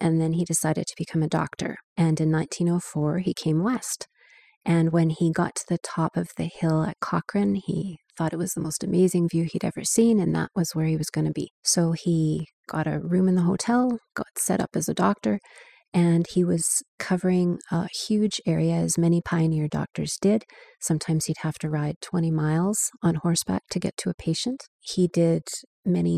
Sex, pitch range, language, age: female, 160-185 Hz, English, 30-49